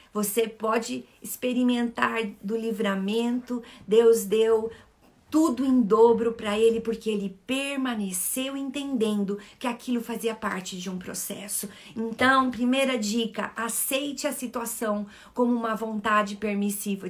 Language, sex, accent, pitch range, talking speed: Portuguese, female, Brazilian, 220-275 Hz, 115 wpm